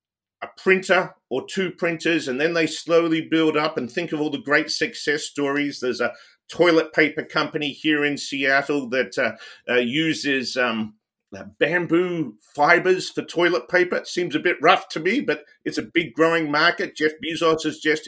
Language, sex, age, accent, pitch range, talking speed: English, male, 50-69, Australian, 135-170 Hz, 185 wpm